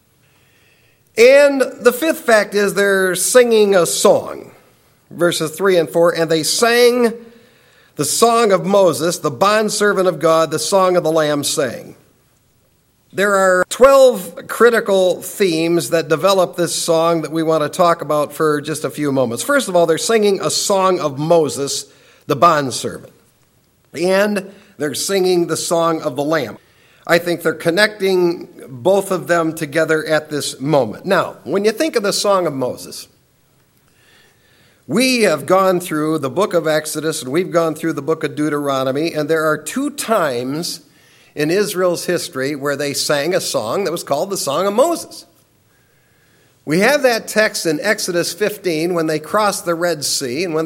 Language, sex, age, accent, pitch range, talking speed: English, male, 50-69, American, 155-195 Hz, 165 wpm